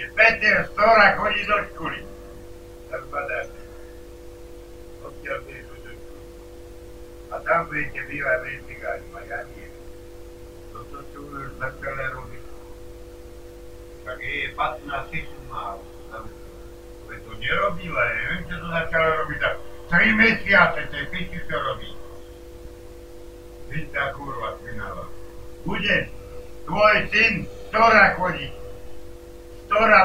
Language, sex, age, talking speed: Slovak, male, 60-79, 70 wpm